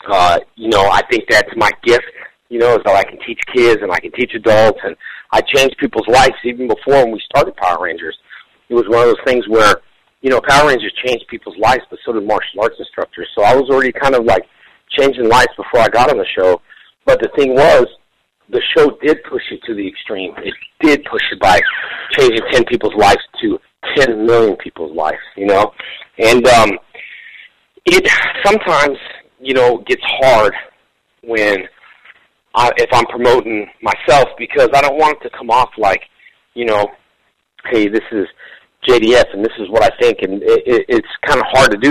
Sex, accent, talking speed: male, American, 200 wpm